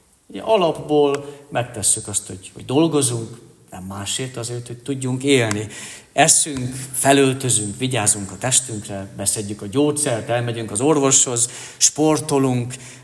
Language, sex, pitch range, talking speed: Hungarian, male, 110-145 Hz, 110 wpm